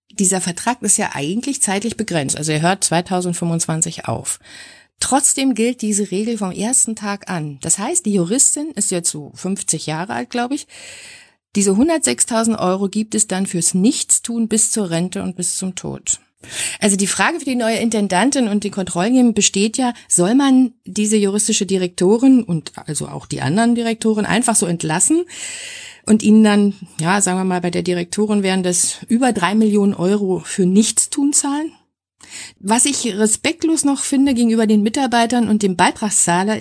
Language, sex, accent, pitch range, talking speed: German, female, German, 185-235 Hz, 170 wpm